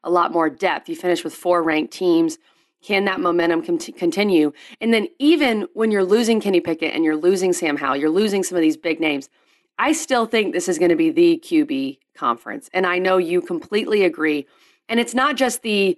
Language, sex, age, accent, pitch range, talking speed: English, female, 30-49, American, 170-225 Hz, 215 wpm